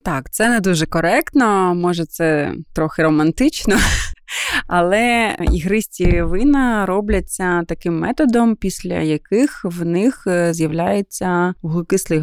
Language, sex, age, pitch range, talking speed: Ukrainian, female, 20-39, 160-200 Hz, 105 wpm